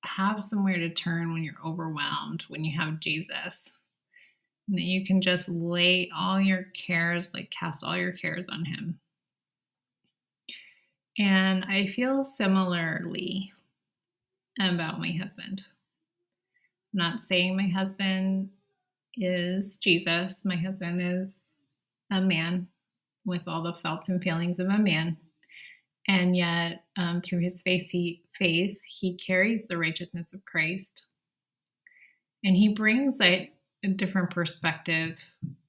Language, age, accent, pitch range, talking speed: English, 20-39, American, 170-195 Hz, 130 wpm